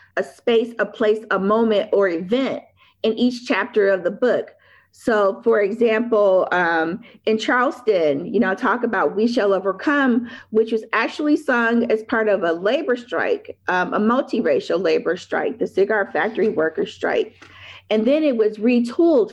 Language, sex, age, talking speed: English, female, 40-59, 160 wpm